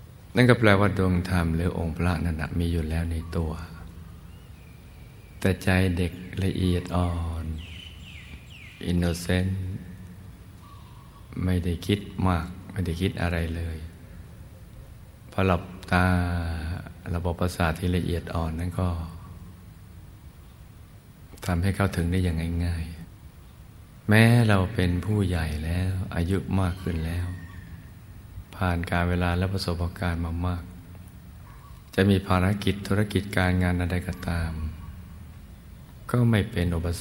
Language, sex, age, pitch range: Thai, male, 60-79, 85-95 Hz